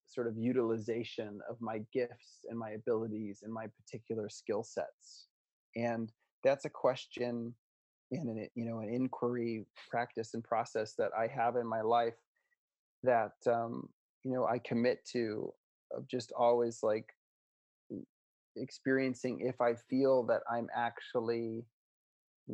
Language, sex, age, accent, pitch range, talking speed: English, male, 30-49, American, 115-125 Hz, 135 wpm